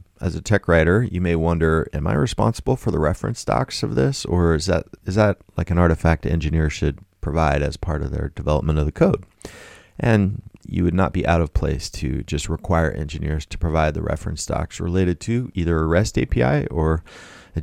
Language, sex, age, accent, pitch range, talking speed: English, male, 30-49, American, 80-100 Hz, 210 wpm